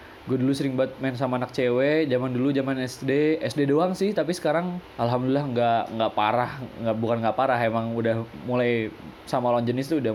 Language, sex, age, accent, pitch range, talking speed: Indonesian, male, 20-39, native, 120-150 Hz, 190 wpm